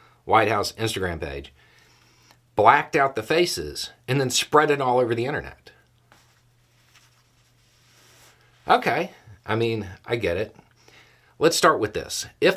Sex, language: male, English